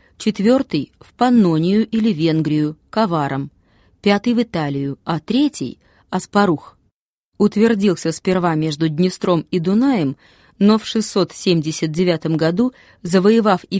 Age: 20-39